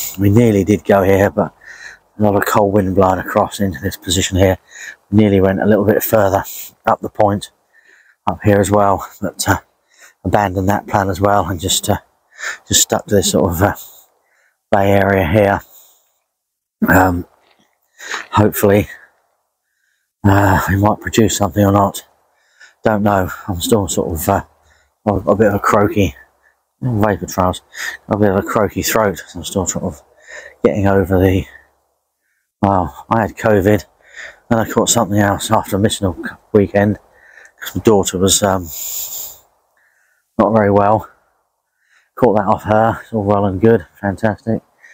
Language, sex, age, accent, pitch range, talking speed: English, male, 30-49, British, 95-105 Hz, 160 wpm